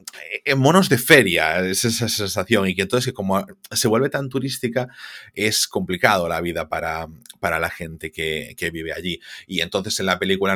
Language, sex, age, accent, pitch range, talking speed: Spanish, male, 30-49, Spanish, 85-120 Hz, 180 wpm